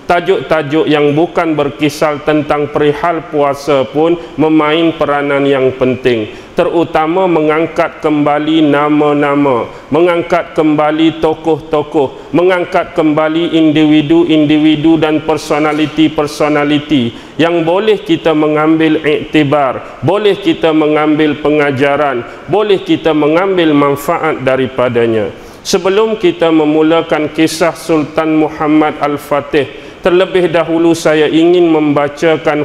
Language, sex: English, male